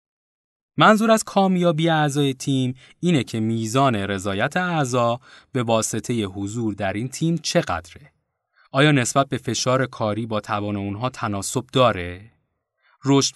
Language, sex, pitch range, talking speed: Persian, male, 105-150 Hz, 125 wpm